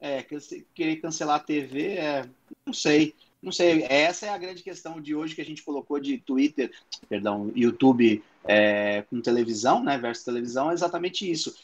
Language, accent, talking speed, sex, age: Portuguese, Brazilian, 175 wpm, male, 30-49